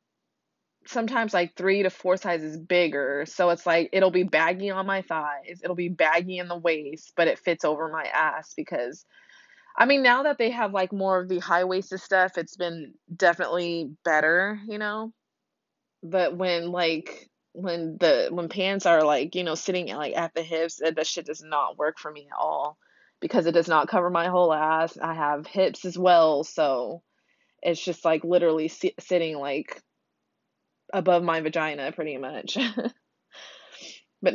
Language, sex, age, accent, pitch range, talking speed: English, female, 20-39, American, 165-190 Hz, 170 wpm